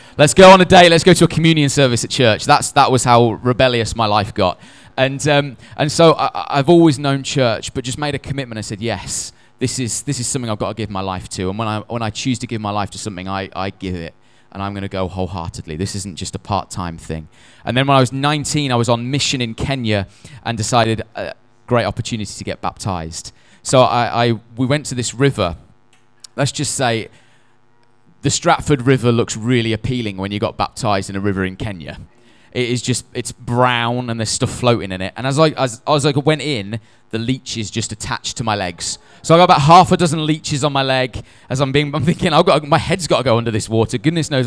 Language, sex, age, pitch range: English, male, 20-39, 110-145 Hz